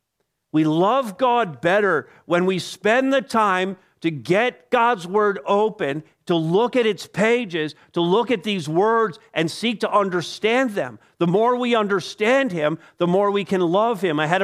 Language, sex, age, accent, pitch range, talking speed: English, male, 50-69, American, 125-195 Hz, 175 wpm